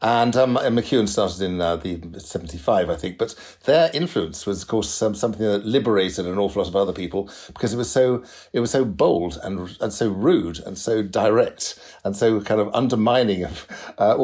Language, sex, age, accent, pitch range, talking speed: English, male, 60-79, British, 95-125 Hz, 205 wpm